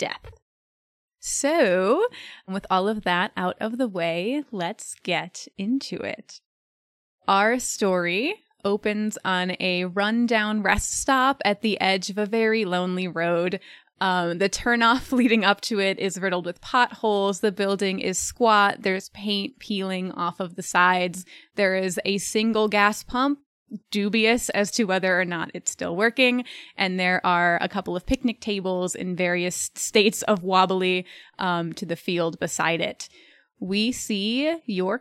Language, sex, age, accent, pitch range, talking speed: English, female, 20-39, American, 180-225 Hz, 155 wpm